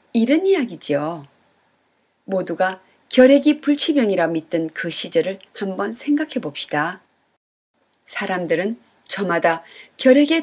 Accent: native